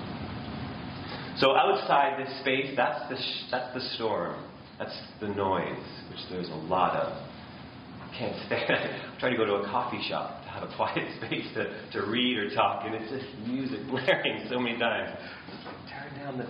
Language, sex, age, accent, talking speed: English, male, 30-49, American, 185 wpm